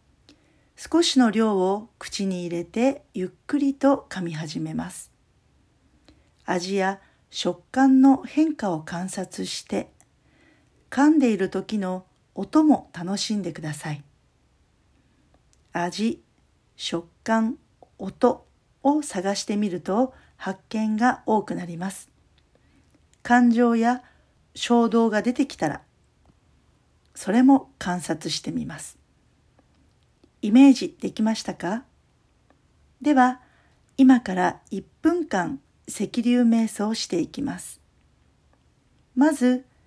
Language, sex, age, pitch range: Japanese, female, 50-69, 180-260 Hz